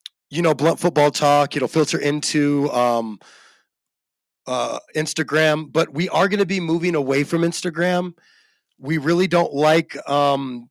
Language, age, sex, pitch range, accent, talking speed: English, 30-49, male, 140-170 Hz, American, 145 wpm